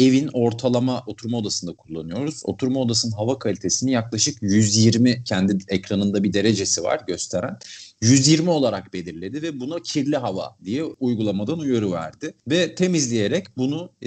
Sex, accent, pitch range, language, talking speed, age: male, native, 105-150 Hz, Turkish, 130 wpm, 40-59